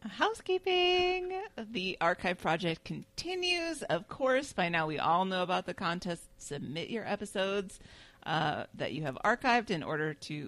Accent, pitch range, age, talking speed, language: American, 160-230 Hz, 40-59, 150 wpm, English